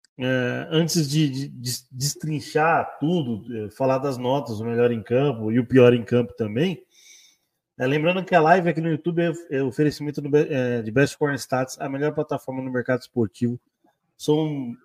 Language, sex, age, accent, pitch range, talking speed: Portuguese, male, 20-39, Brazilian, 125-155 Hz, 185 wpm